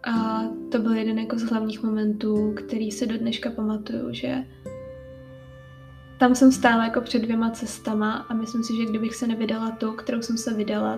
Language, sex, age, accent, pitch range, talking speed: Czech, female, 10-29, native, 220-245 Hz, 175 wpm